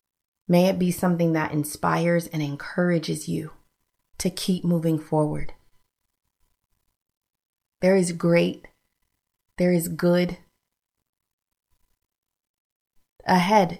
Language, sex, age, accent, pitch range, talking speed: English, female, 30-49, American, 160-195 Hz, 85 wpm